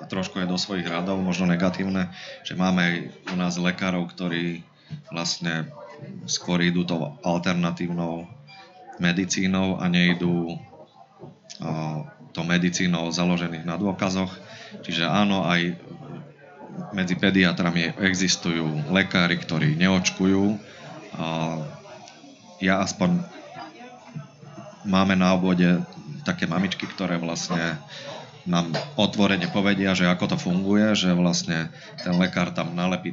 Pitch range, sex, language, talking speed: 85-95 Hz, male, Slovak, 105 wpm